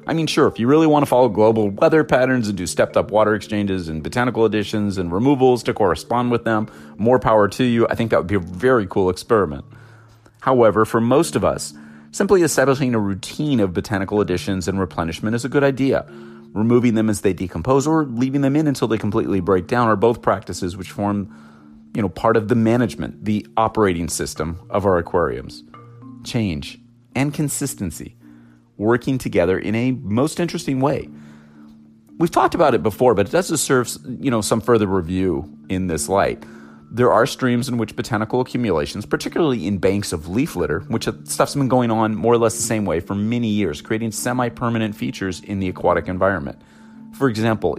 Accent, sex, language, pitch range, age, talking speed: American, male, English, 95-125 Hz, 30-49, 190 wpm